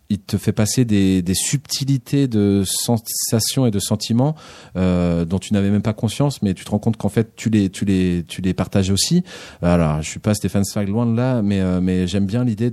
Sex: male